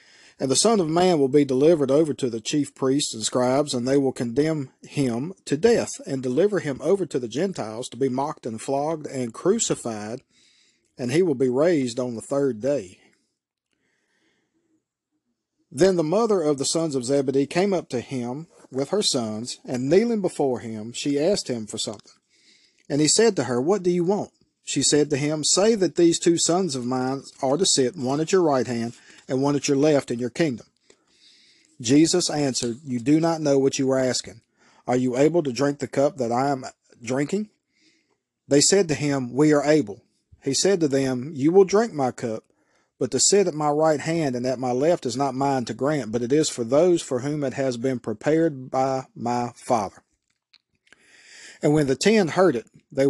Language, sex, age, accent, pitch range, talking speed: English, male, 40-59, American, 125-165 Hz, 200 wpm